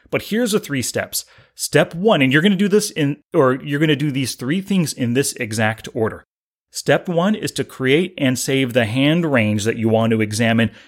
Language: English